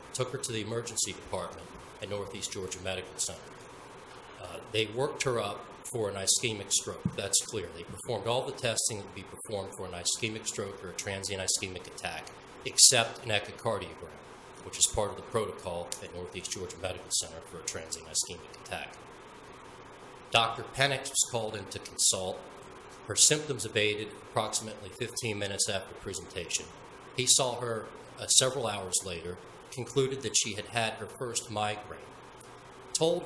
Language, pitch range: English, 100-120 Hz